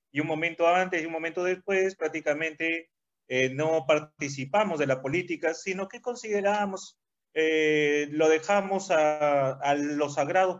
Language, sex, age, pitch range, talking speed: Spanish, male, 30-49, 140-180 Hz, 140 wpm